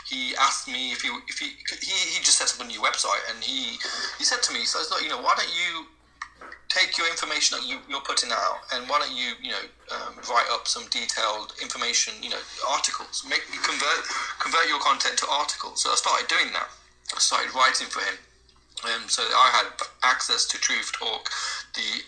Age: 30-49